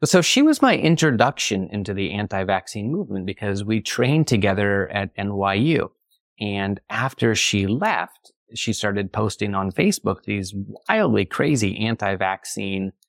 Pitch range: 100-125 Hz